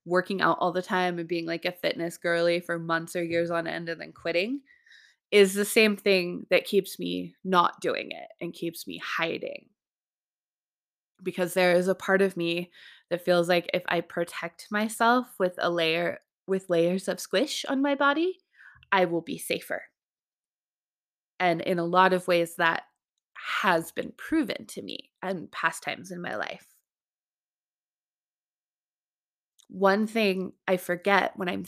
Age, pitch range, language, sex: 20-39, 165-195 Hz, English, female